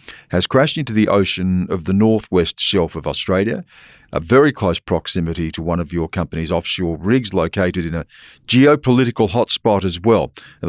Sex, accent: male, Australian